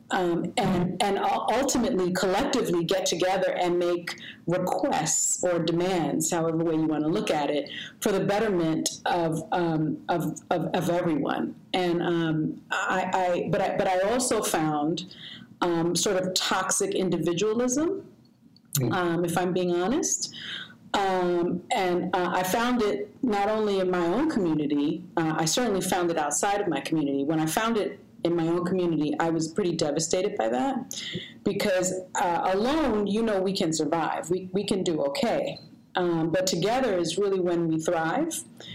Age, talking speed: 40-59, 165 wpm